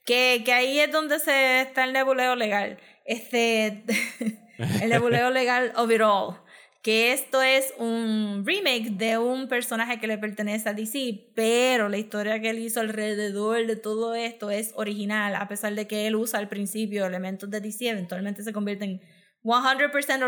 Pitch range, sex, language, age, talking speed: 205-245 Hz, female, Spanish, 20-39, 170 wpm